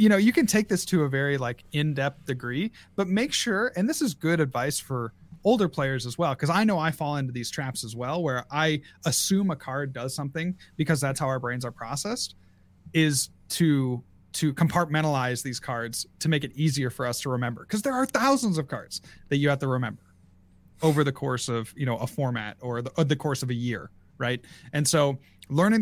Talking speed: 220 wpm